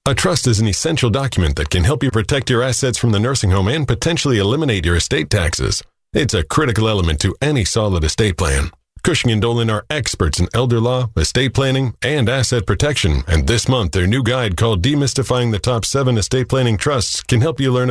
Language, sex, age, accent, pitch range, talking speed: English, male, 40-59, American, 100-125 Hz, 210 wpm